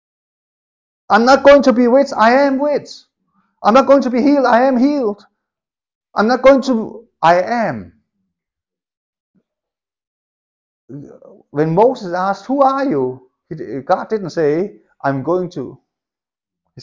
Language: English